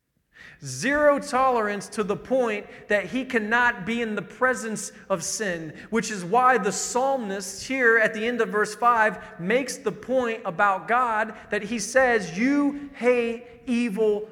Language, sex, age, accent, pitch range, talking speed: English, male, 40-59, American, 195-240 Hz, 155 wpm